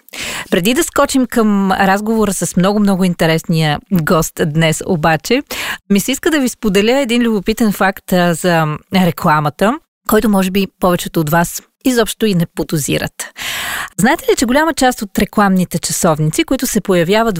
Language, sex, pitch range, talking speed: Bulgarian, female, 175-235 Hz, 150 wpm